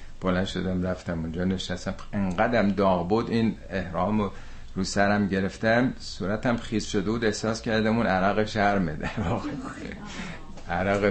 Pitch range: 85-110 Hz